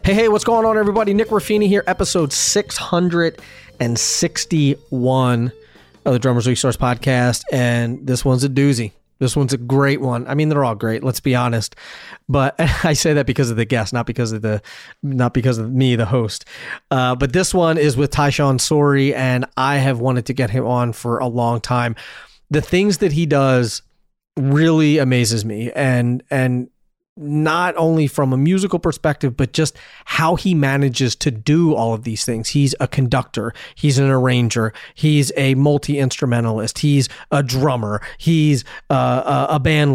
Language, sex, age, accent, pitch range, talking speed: English, male, 30-49, American, 125-155 Hz, 175 wpm